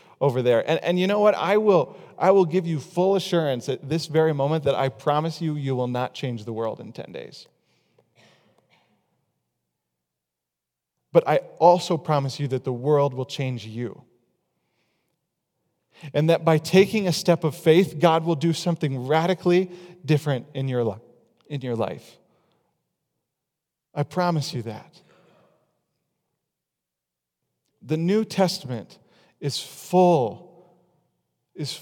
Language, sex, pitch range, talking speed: English, male, 135-180 Hz, 140 wpm